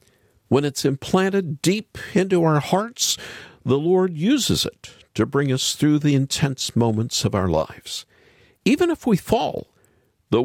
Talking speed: 150 wpm